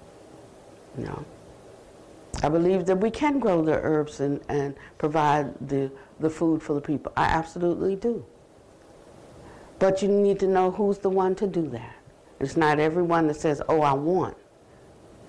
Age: 60-79